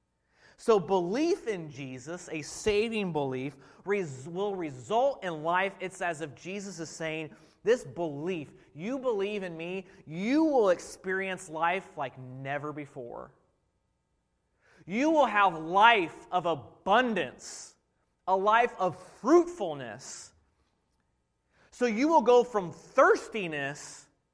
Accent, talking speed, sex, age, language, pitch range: American, 115 wpm, male, 30-49, English, 130-195 Hz